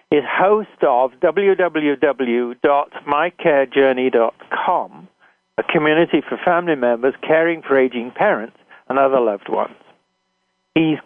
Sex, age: male, 60-79